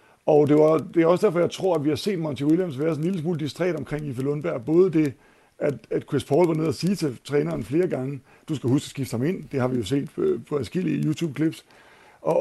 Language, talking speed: Danish, 270 wpm